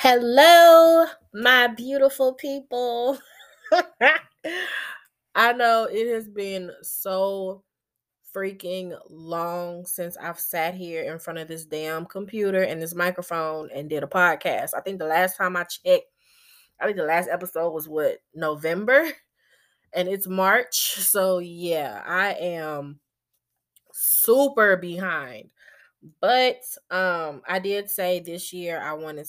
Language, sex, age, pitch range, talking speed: English, female, 20-39, 155-200 Hz, 125 wpm